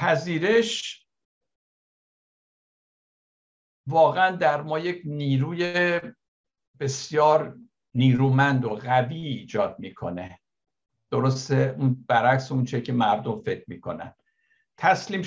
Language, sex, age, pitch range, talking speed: Persian, male, 60-79, 125-155 Hz, 85 wpm